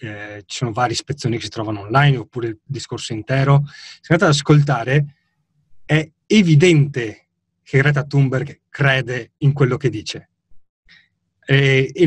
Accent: native